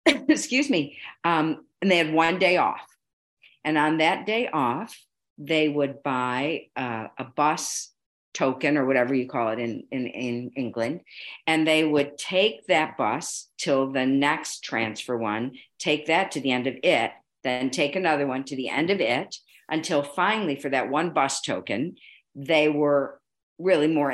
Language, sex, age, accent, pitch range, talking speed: English, female, 50-69, American, 135-160 Hz, 170 wpm